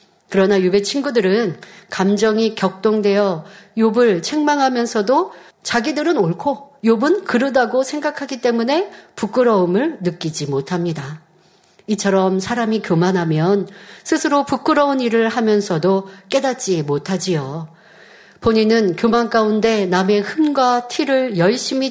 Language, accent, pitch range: Korean, native, 185-255 Hz